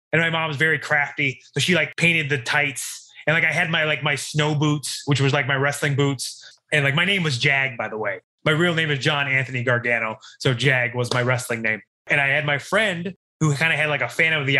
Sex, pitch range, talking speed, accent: male, 140-190 Hz, 260 wpm, American